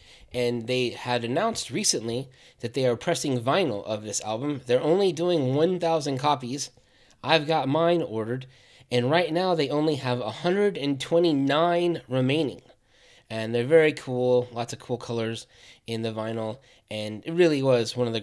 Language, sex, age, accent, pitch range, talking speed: English, male, 20-39, American, 110-130 Hz, 160 wpm